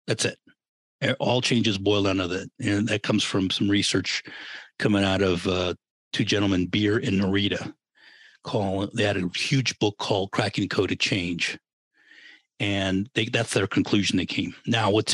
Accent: American